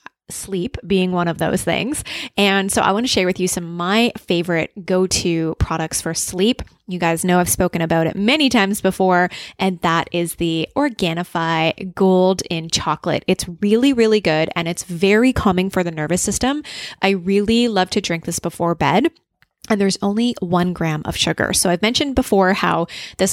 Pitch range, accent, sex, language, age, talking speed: 165-205 Hz, American, female, English, 20-39, 185 wpm